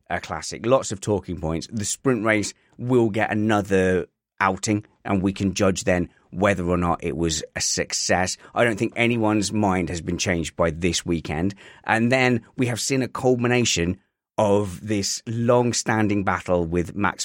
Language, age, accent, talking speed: English, 30-49, British, 170 wpm